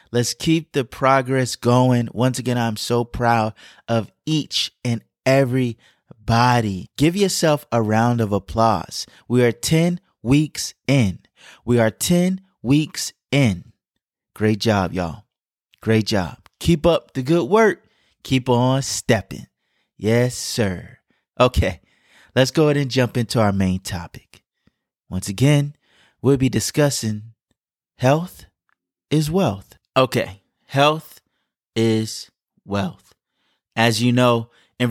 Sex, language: male, English